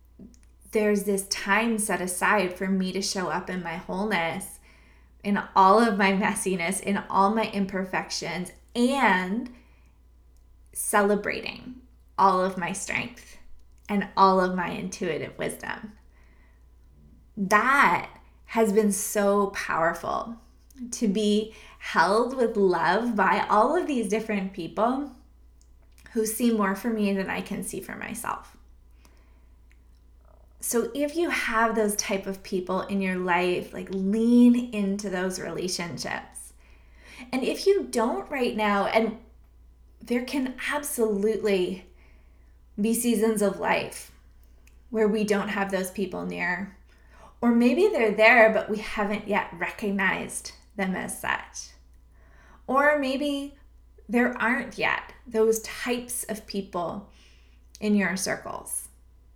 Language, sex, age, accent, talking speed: English, female, 20-39, American, 125 wpm